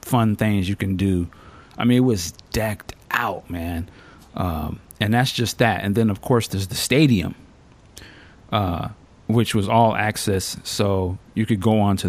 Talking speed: 170 wpm